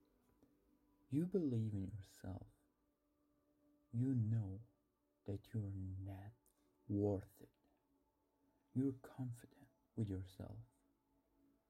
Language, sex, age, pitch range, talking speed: English, male, 50-69, 100-140 Hz, 75 wpm